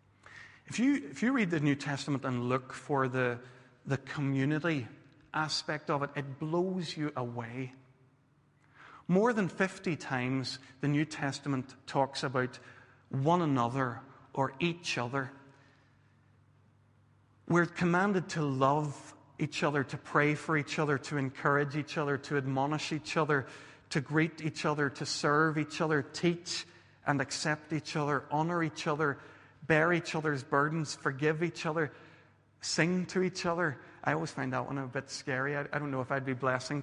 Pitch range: 135-155 Hz